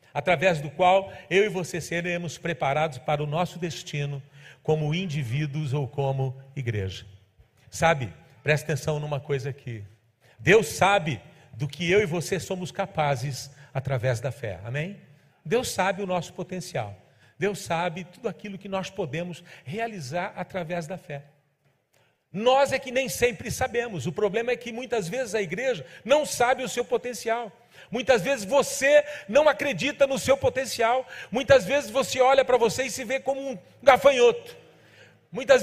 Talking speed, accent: 155 wpm, Brazilian